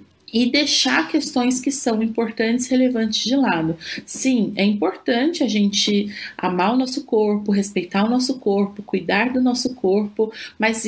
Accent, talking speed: Brazilian, 155 wpm